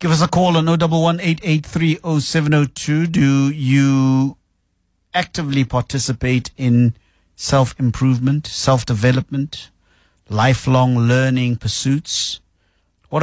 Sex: male